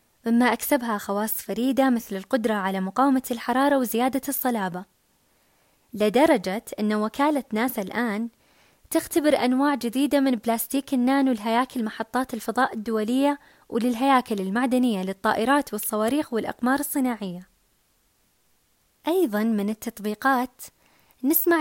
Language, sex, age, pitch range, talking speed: Arabic, female, 20-39, 220-280 Hz, 100 wpm